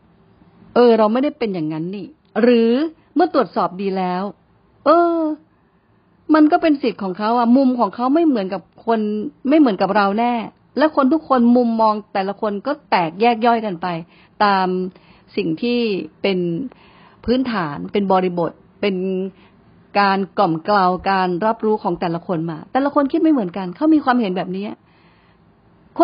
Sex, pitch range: female, 180-250 Hz